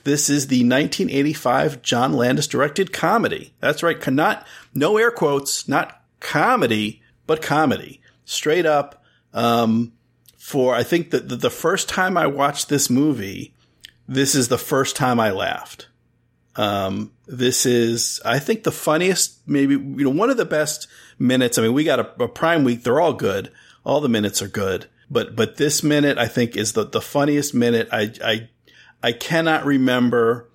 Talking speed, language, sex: 170 wpm, English, male